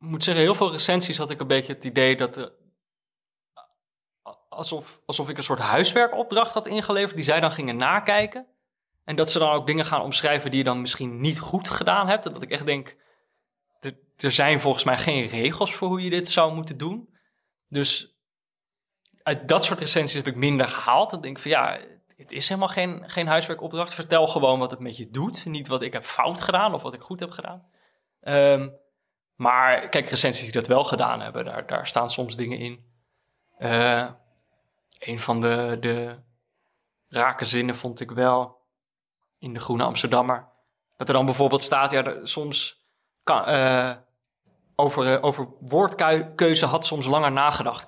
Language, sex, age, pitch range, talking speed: Dutch, male, 20-39, 125-160 Hz, 185 wpm